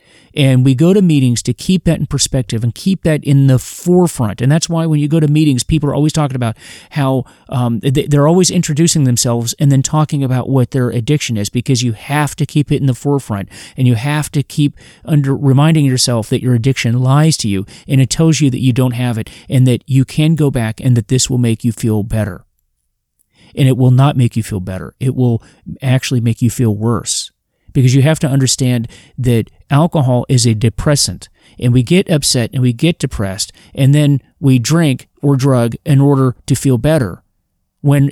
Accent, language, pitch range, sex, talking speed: American, English, 120-145 Hz, male, 210 wpm